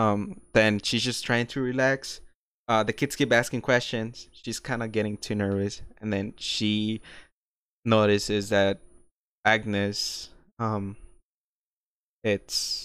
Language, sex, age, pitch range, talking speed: English, male, 20-39, 100-115 Hz, 125 wpm